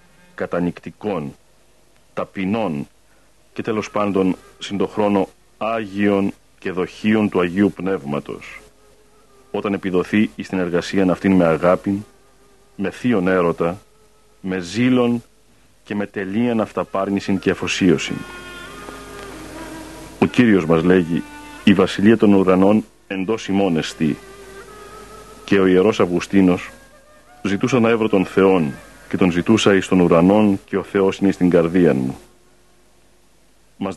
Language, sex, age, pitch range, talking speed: Greek, male, 40-59, 90-105 Hz, 115 wpm